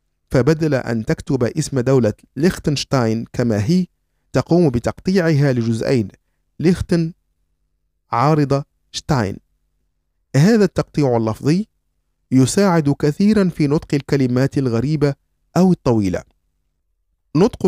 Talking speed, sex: 90 wpm, male